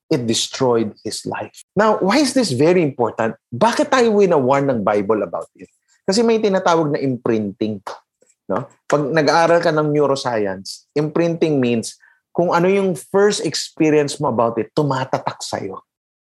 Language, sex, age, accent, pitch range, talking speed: English, male, 30-49, Filipino, 115-175 Hz, 150 wpm